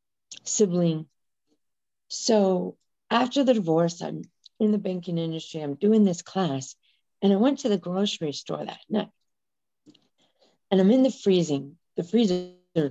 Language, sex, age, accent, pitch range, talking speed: English, female, 40-59, American, 170-225 Hz, 140 wpm